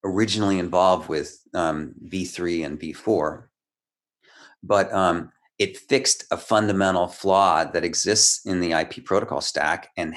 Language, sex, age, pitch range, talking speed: English, male, 40-59, 85-110 Hz, 130 wpm